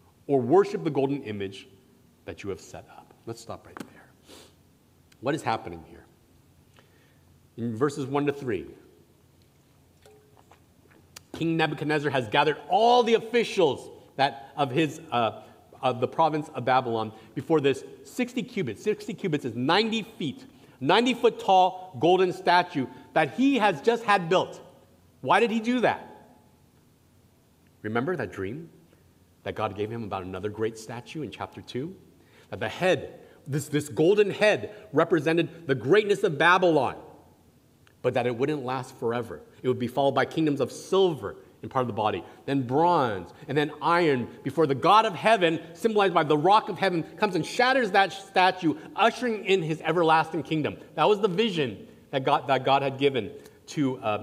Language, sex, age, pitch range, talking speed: English, male, 40-59, 130-195 Hz, 160 wpm